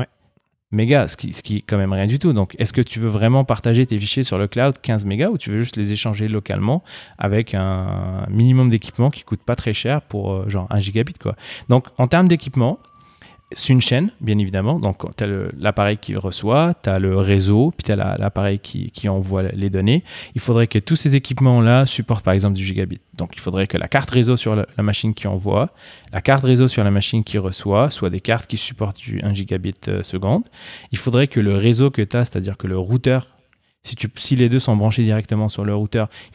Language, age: French, 30-49